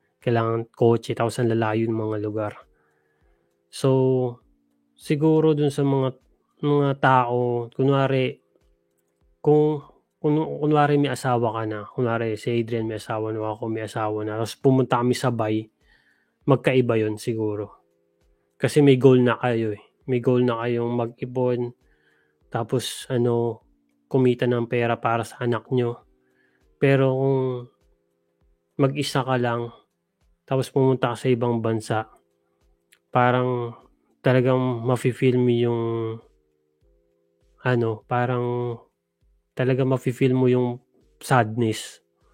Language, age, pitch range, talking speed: Filipino, 20-39, 110-125 Hz, 115 wpm